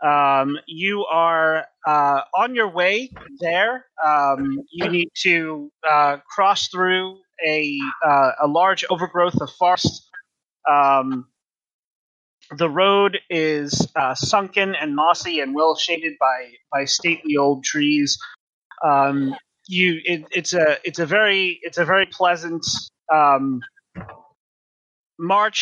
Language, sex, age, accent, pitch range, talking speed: English, male, 30-49, American, 145-185 Hz, 120 wpm